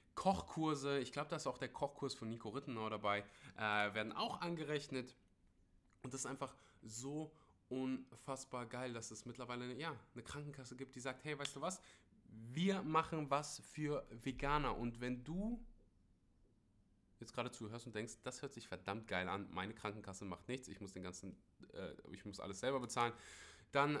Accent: German